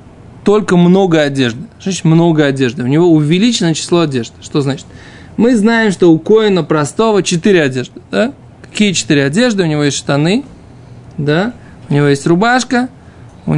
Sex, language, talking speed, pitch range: male, Russian, 155 wpm, 135-195 Hz